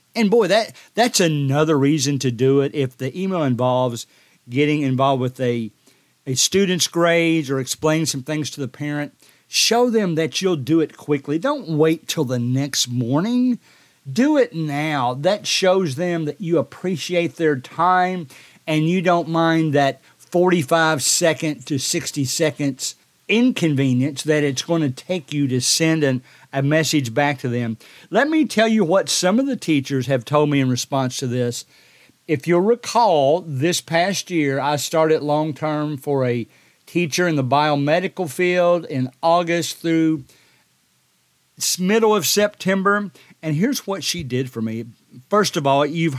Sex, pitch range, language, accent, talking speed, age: male, 135-175 Hz, English, American, 160 wpm, 50-69